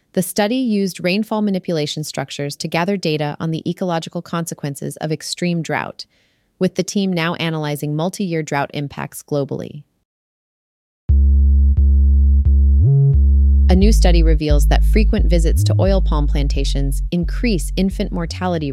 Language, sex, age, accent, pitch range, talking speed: English, female, 30-49, American, 150-185 Hz, 125 wpm